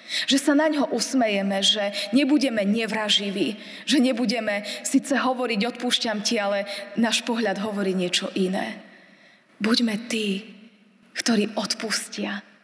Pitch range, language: 200-240 Hz, Slovak